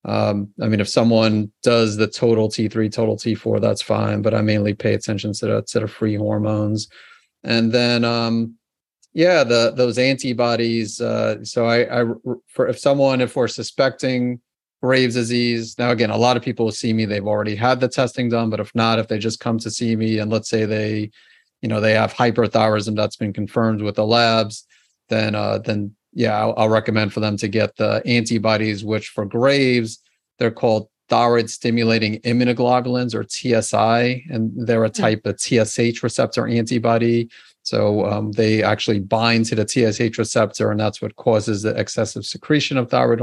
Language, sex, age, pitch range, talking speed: English, male, 30-49, 110-120 Hz, 180 wpm